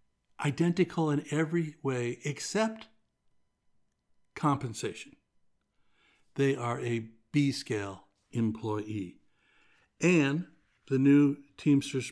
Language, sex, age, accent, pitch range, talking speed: English, male, 60-79, American, 120-145 Hz, 75 wpm